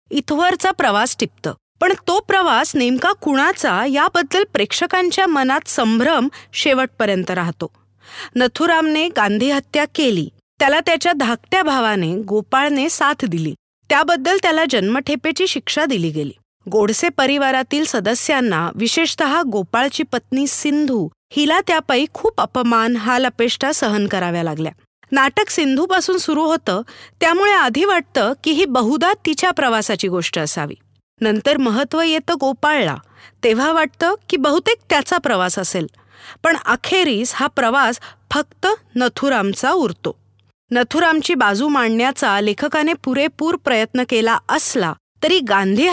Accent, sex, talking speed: native, female, 115 wpm